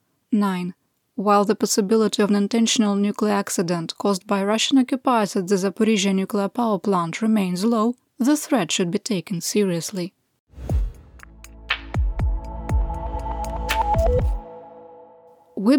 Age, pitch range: 20-39, 195-240 Hz